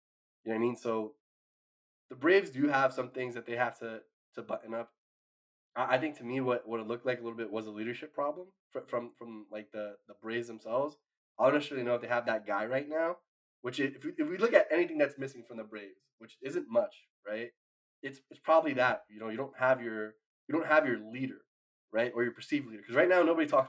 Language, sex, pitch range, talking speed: English, male, 110-145 Hz, 250 wpm